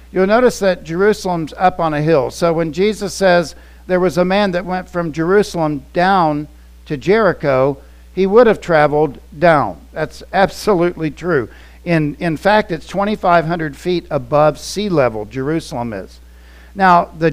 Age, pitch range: 50-69, 120-180 Hz